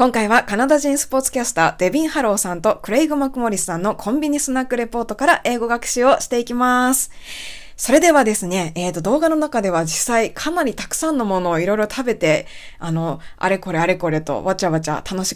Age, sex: 20-39, female